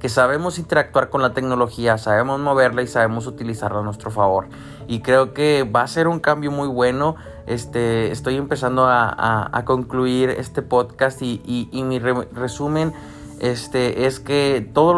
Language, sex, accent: Spanish, male, Mexican